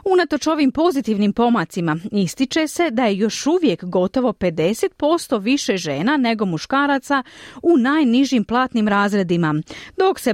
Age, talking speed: 40-59, 130 wpm